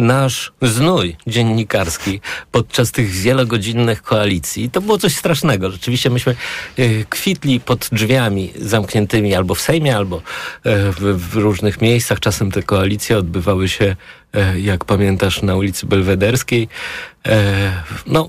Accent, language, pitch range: native, Polish, 100-125 Hz